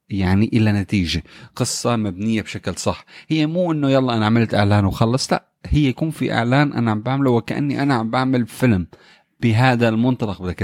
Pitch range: 105-135 Hz